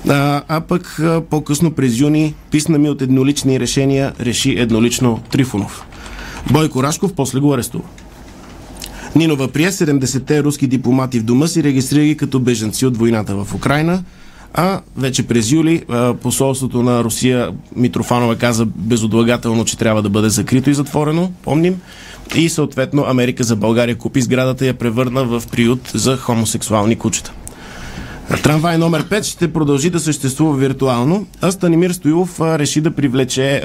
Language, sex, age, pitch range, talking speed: Bulgarian, male, 20-39, 115-145 Hz, 145 wpm